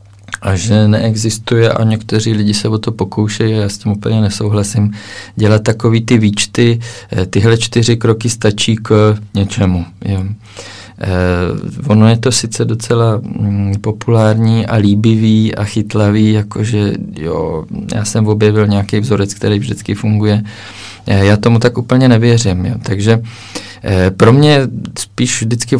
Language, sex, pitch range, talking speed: Czech, male, 105-120 Hz, 125 wpm